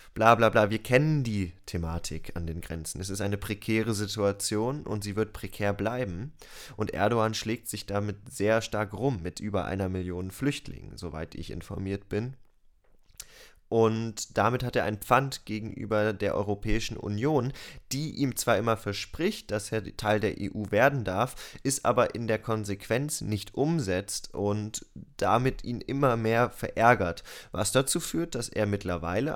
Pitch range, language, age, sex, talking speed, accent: 100-125 Hz, German, 20-39, male, 155 wpm, German